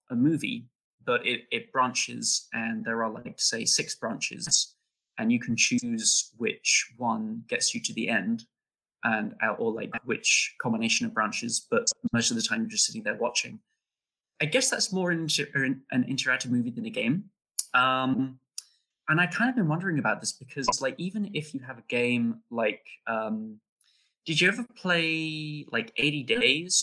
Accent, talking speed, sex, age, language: British, 175 wpm, male, 20-39, English